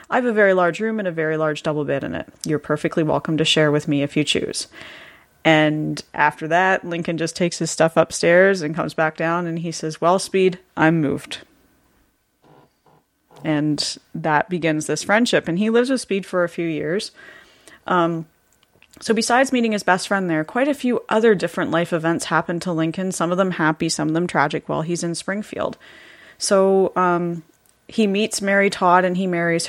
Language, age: English, 30-49